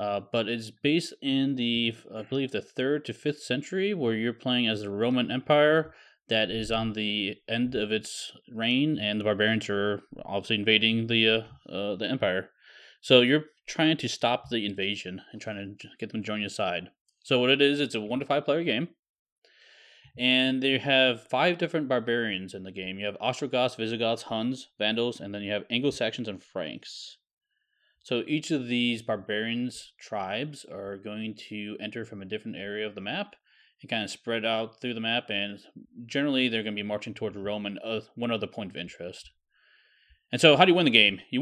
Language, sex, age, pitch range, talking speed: English, male, 20-39, 110-135 Hz, 200 wpm